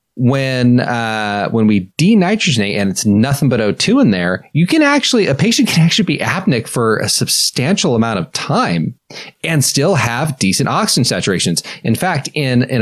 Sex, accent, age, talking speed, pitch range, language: male, American, 30-49, 175 wpm, 105-155 Hz, English